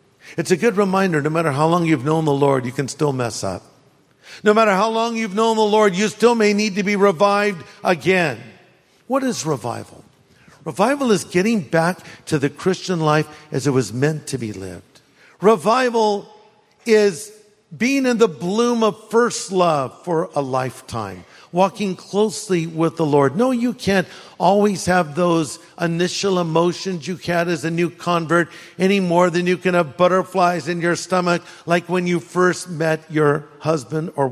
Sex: male